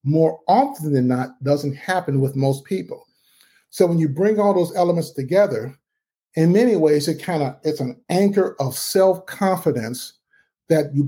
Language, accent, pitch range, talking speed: English, American, 140-175 Hz, 155 wpm